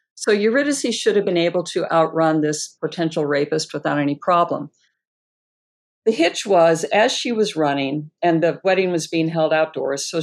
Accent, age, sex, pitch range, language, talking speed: American, 50-69, female, 160-200 Hz, English, 170 wpm